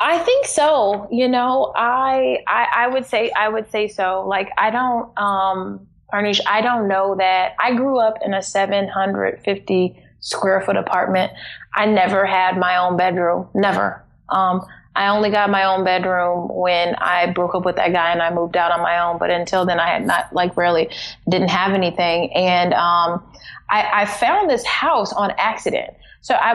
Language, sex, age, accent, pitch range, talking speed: English, female, 20-39, American, 180-205 Hz, 185 wpm